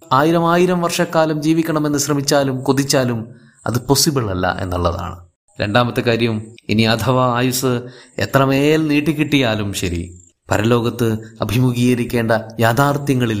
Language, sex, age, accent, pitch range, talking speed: Malayalam, male, 20-39, native, 105-150 Hz, 95 wpm